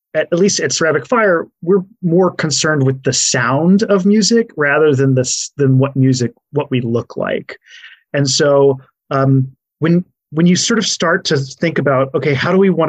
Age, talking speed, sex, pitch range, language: 30-49, 185 wpm, male, 130-155 Hz, English